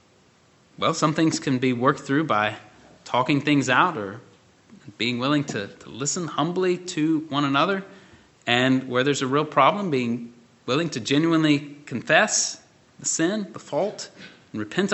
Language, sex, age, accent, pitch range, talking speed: English, male, 30-49, American, 135-170 Hz, 155 wpm